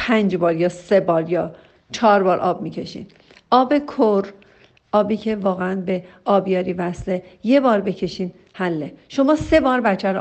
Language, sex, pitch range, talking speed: Persian, female, 210-265 Hz, 145 wpm